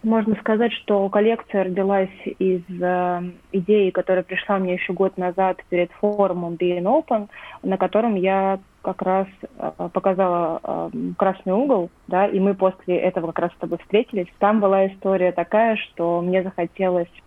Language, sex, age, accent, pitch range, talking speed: Russian, female, 20-39, native, 175-200 Hz, 155 wpm